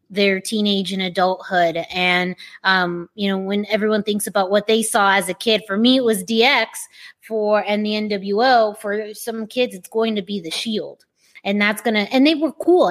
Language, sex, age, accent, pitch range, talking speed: English, female, 20-39, American, 195-235 Hz, 205 wpm